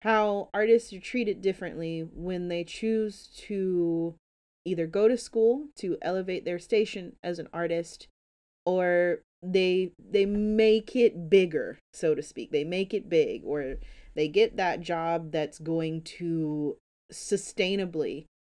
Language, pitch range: English, 160-195 Hz